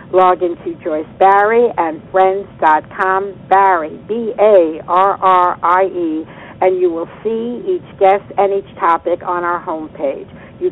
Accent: American